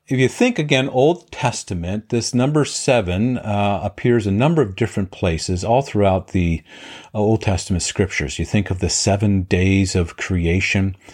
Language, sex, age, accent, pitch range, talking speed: English, male, 50-69, American, 90-110 Hz, 165 wpm